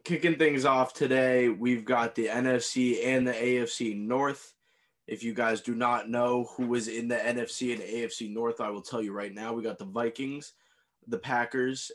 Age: 20-39